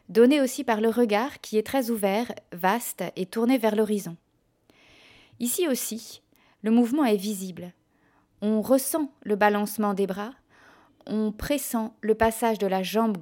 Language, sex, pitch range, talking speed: French, female, 200-240 Hz, 150 wpm